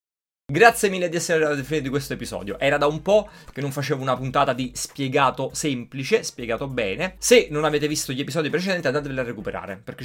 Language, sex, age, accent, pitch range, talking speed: Italian, male, 20-39, native, 120-160 Hz, 210 wpm